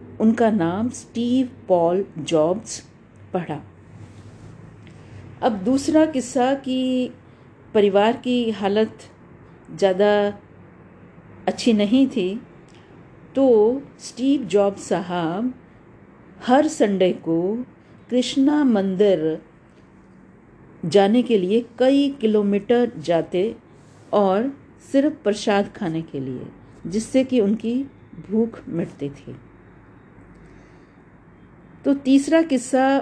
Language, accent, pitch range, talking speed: Hindi, native, 185-255 Hz, 85 wpm